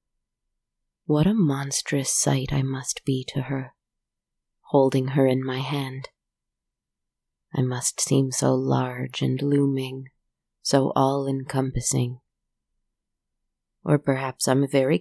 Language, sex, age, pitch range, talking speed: English, female, 30-49, 130-145 Hz, 110 wpm